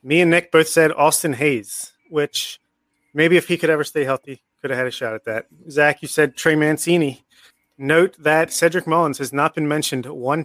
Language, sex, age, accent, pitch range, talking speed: English, male, 30-49, American, 135-160 Hz, 205 wpm